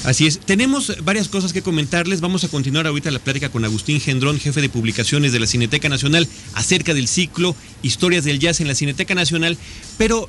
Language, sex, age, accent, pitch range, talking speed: Spanish, male, 40-59, Mexican, 125-170 Hz, 200 wpm